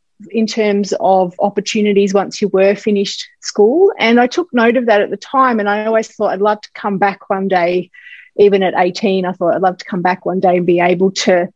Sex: female